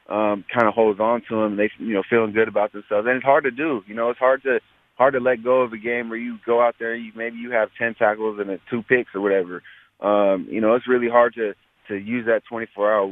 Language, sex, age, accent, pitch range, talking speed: English, male, 20-39, American, 95-110 Hz, 275 wpm